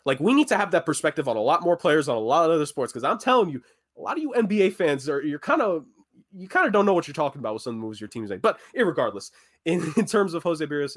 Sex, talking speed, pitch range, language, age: male, 310 wpm, 120-160 Hz, English, 20-39